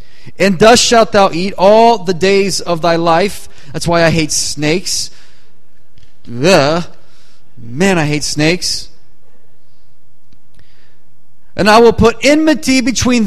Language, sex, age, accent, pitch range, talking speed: English, male, 30-49, American, 120-180 Hz, 120 wpm